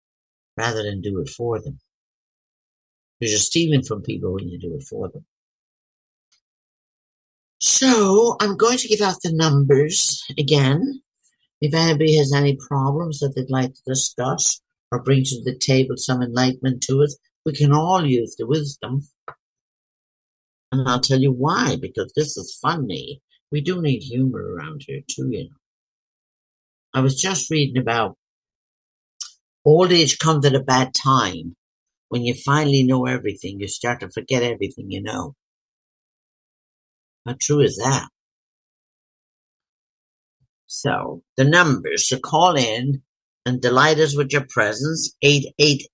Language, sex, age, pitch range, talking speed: English, male, 60-79, 130-155 Hz, 145 wpm